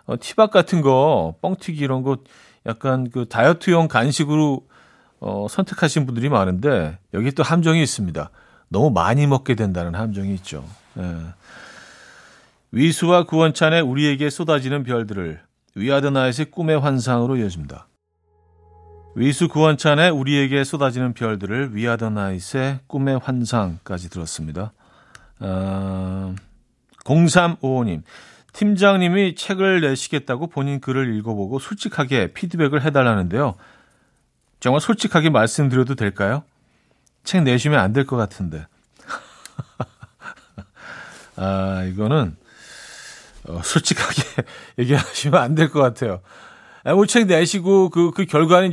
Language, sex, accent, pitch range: Korean, male, native, 100-155 Hz